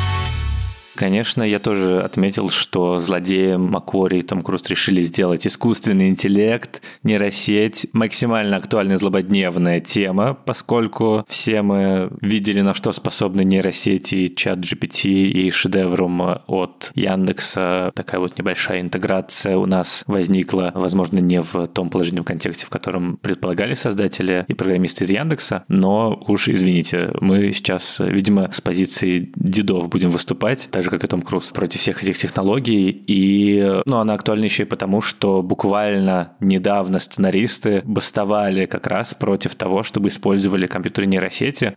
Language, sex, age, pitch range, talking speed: Russian, male, 20-39, 95-105 Hz, 135 wpm